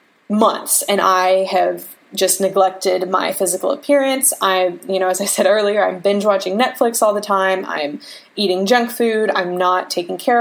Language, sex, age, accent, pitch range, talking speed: English, female, 20-39, American, 190-260 Hz, 180 wpm